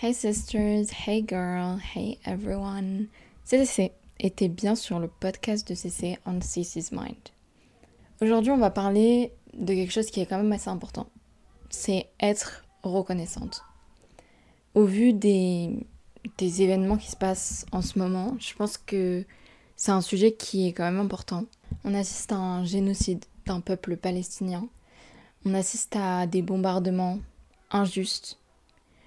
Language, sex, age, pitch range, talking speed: French, female, 20-39, 180-205 Hz, 140 wpm